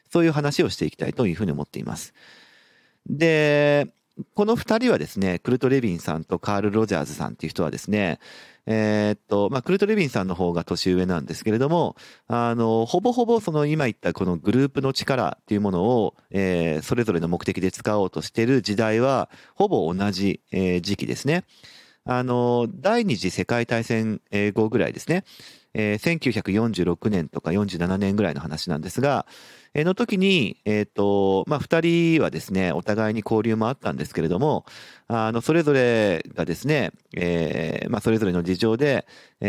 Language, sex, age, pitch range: Japanese, male, 40-59, 95-135 Hz